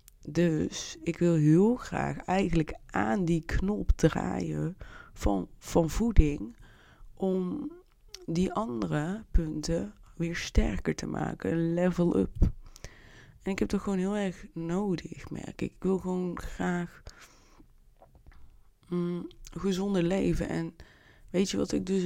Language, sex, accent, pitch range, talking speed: Dutch, female, Dutch, 150-180 Hz, 125 wpm